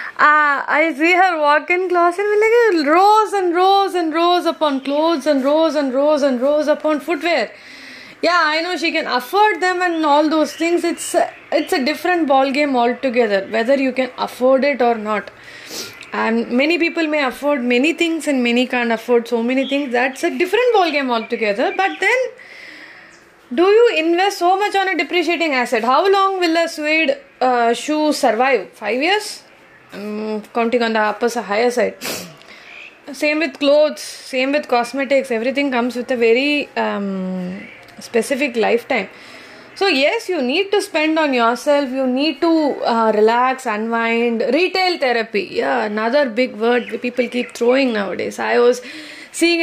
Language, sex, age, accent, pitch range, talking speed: English, female, 20-39, Indian, 235-330 Hz, 165 wpm